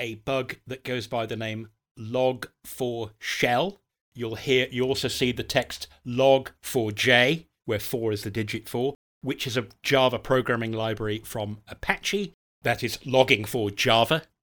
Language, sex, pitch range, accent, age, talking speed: English, male, 110-130 Hz, British, 40-59, 145 wpm